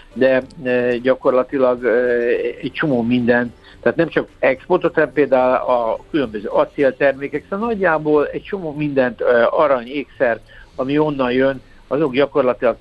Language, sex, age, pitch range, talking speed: Hungarian, male, 60-79, 125-145 Hz, 120 wpm